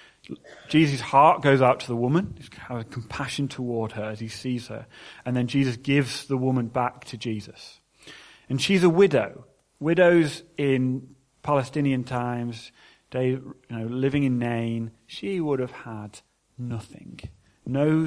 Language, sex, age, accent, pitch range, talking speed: English, male, 30-49, British, 120-140 Hz, 145 wpm